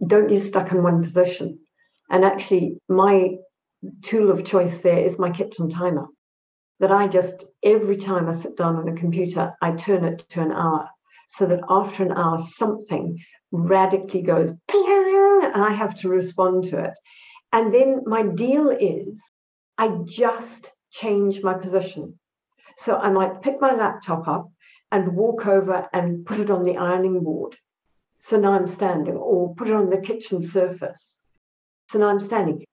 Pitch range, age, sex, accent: 175-220 Hz, 50-69, female, British